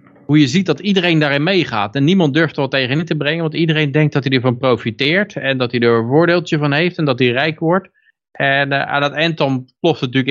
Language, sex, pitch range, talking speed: Dutch, male, 125-145 Hz, 255 wpm